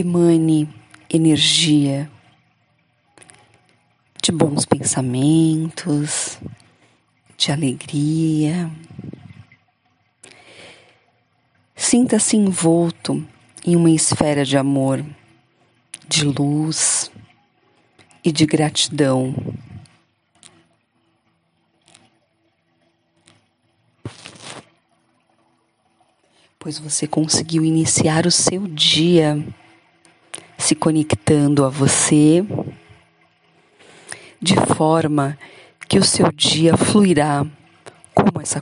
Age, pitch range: 40-59, 135-160 Hz